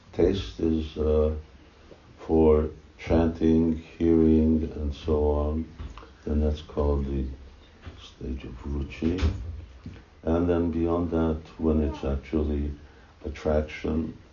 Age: 60-79